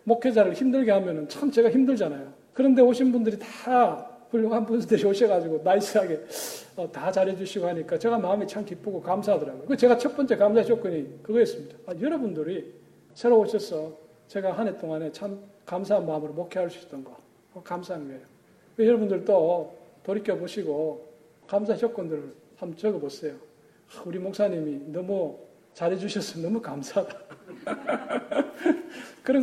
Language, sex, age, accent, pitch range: Korean, male, 40-59, native, 170-230 Hz